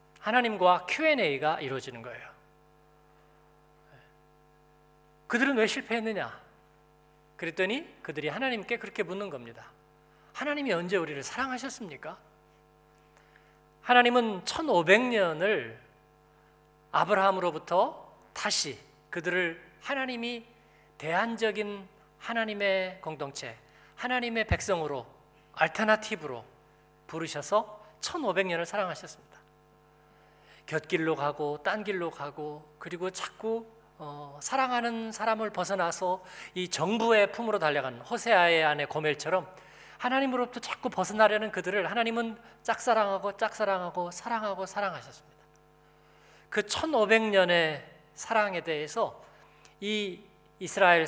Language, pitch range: Korean, 155-225 Hz